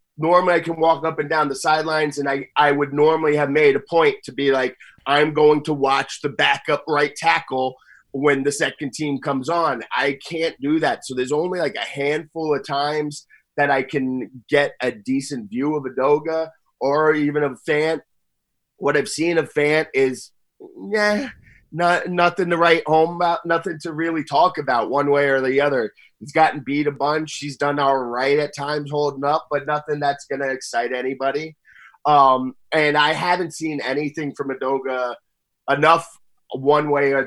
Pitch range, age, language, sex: 135-160 Hz, 30-49, English, male